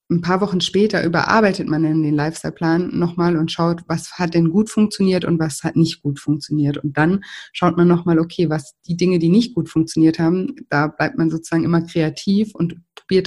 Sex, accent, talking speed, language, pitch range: female, German, 200 wpm, German, 155-175 Hz